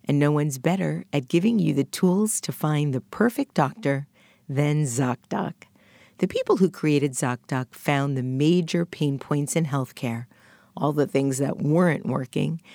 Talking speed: 160 wpm